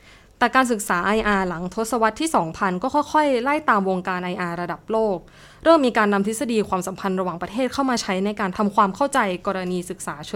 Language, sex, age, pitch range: Thai, female, 20-39, 180-235 Hz